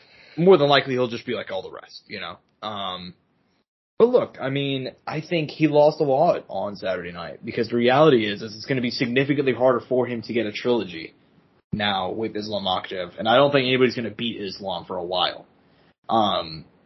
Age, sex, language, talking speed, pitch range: 20-39, male, English, 215 wpm, 115-145 Hz